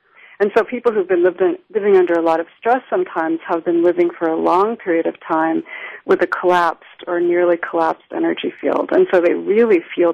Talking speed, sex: 205 wpm, female